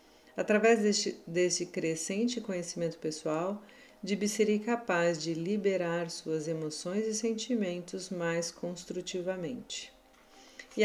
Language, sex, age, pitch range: Portuguese, female, 40-59, 170-210 Hz